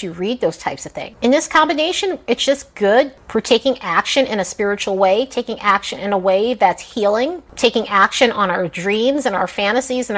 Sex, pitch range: female, 200-270 Hz